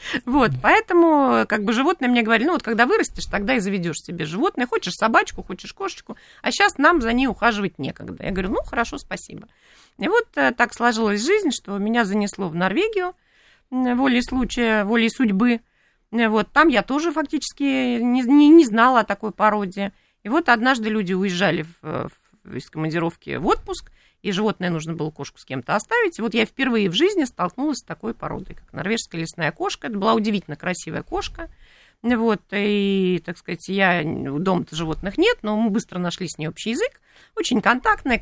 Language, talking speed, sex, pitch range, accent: Russian, 175 wpm, female, 195-285 Hz, native